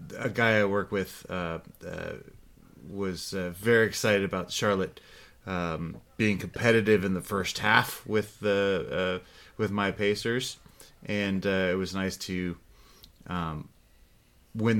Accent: American